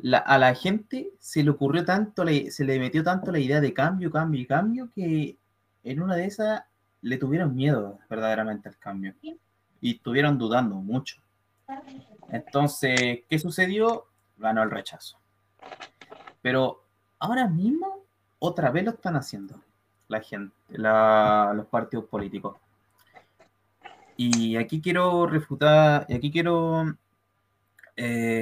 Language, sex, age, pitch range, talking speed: Spanish, male, 20-39, 105-165 Hz, 135 wpm